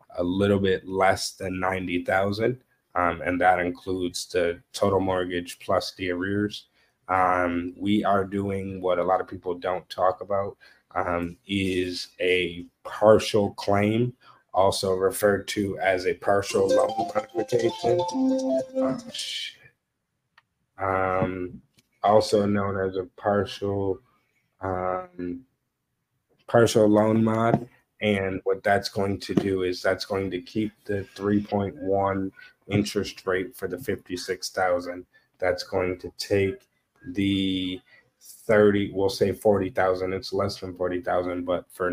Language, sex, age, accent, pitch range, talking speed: English, male, 20-39, American, 90-100 Hz, 125 wpm